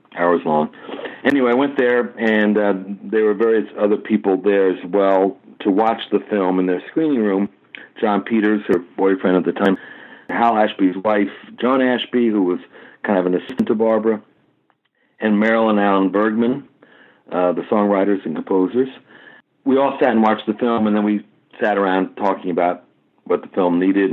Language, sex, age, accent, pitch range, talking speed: English, male, 60-79, American, 95-115 Hz, 175 wpm